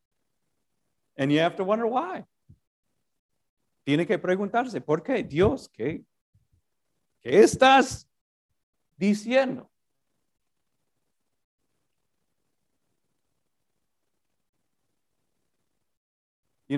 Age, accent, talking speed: 40-59, American, 55 wpm